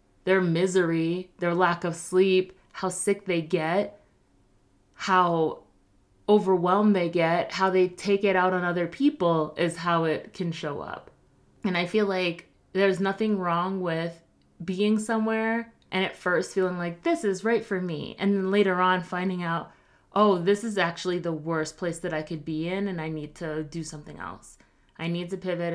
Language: English